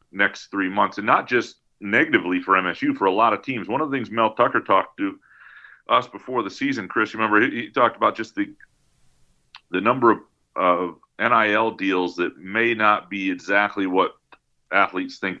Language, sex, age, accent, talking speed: English, male, 40-59, American, 190 wpm